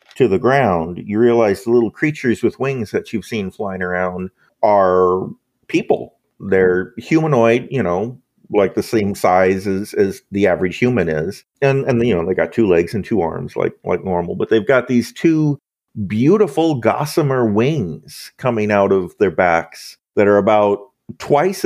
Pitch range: 95-115 Hz